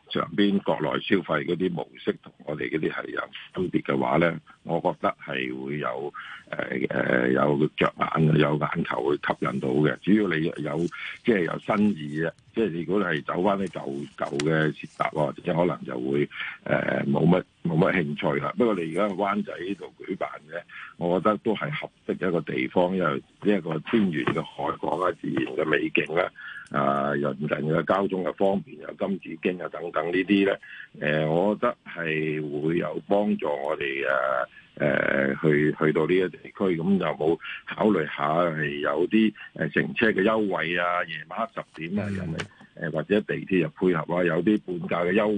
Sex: male